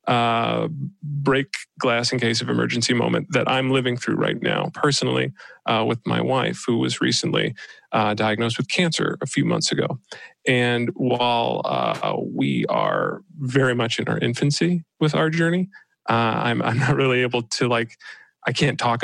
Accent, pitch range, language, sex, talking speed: American, 115-140 Hz, English, male, 170 wpm